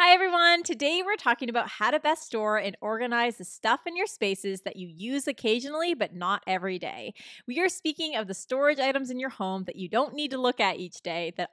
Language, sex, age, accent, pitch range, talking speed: English, female, 20-39, American, 190-275 Hz, 235 wpm